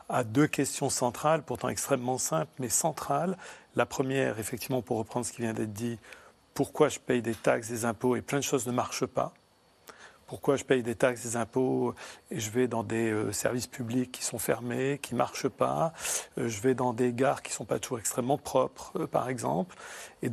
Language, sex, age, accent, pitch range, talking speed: French, male, 40-59, French, 120-140 Hz, 215 wpm